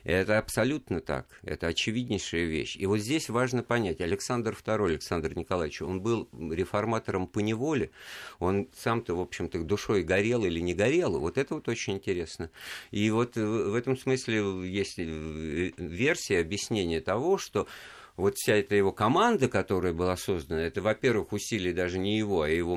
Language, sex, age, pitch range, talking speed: Russian, male, 50-69, 80-110 Hz, 160 wpm